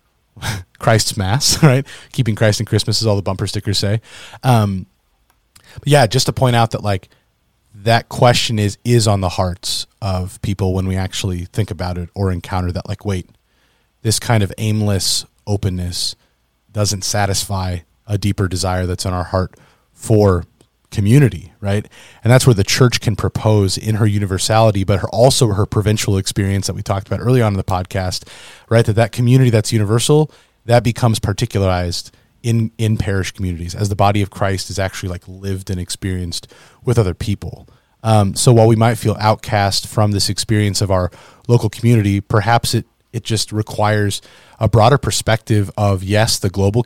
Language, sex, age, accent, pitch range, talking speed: English, male, 30-49, American, 95-115 Hz, 180 wpm